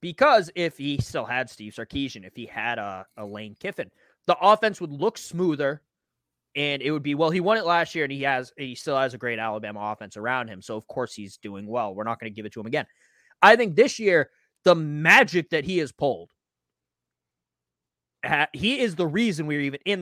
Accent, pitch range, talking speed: American, 120-180 Hz, 220 wpm